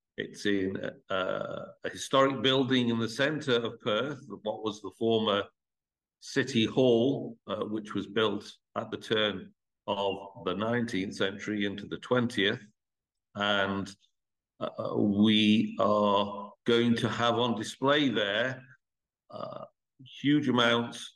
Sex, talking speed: male, 125 wpm